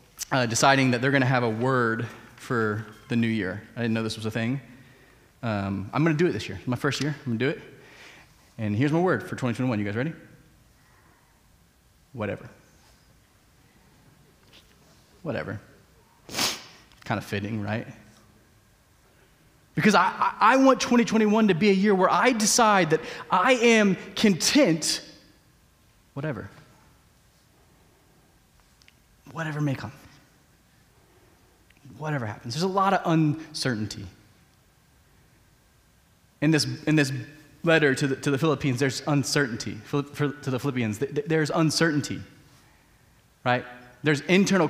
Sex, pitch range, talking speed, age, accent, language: male, 125-175 Hz, 130 wpm, 30-49, American, English